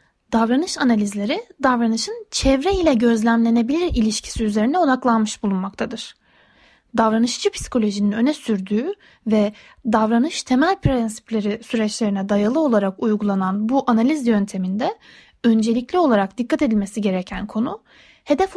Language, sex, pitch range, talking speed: Turkish, female, 215-300 Hz, 105 wpm